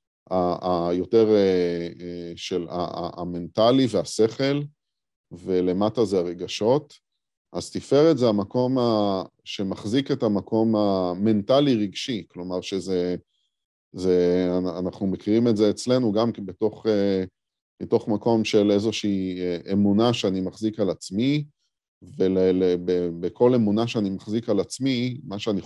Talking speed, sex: 110 wpm, male